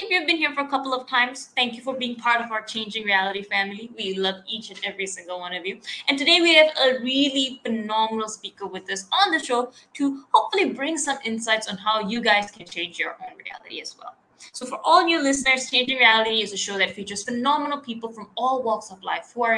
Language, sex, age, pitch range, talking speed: English, female, 10-29, 200-275 Hz, 240 wpm